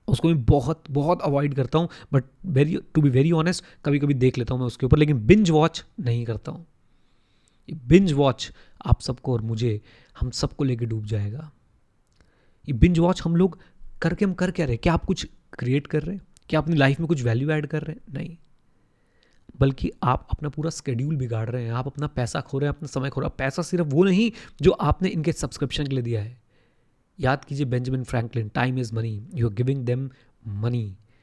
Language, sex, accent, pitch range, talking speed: Hindi, male, native, 120-155 Hz, 215 wpm